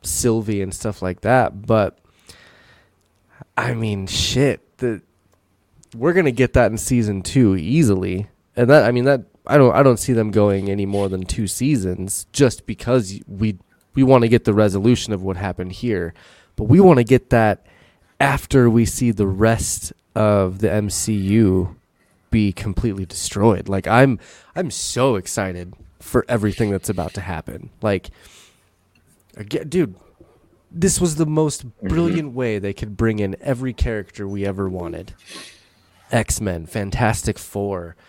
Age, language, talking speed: 20-39, English, 150 wpm